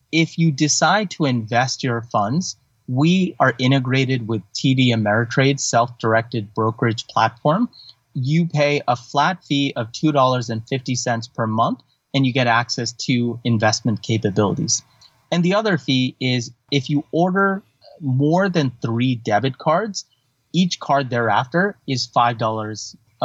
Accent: American